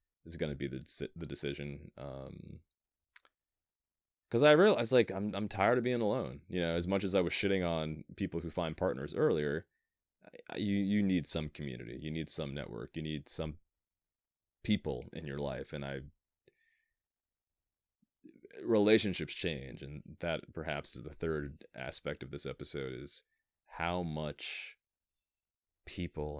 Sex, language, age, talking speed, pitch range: male, English, 30-49, 155 wpm, 75-90 Hz